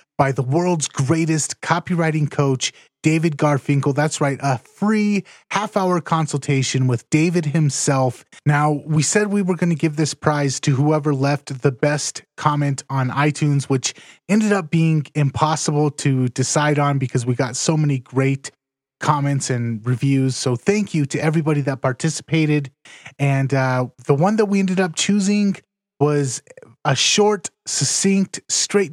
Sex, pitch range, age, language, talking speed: male, 140-180 Hz, 30-49, English, 150 wpm